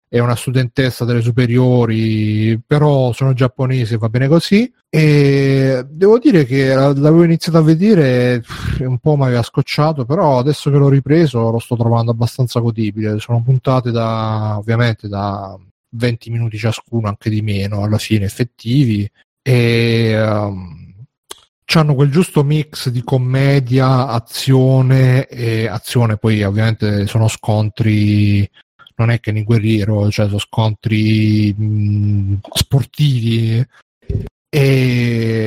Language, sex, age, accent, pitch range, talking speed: Italian, male, 30-49, native, 110-140 Hz, 120 wpm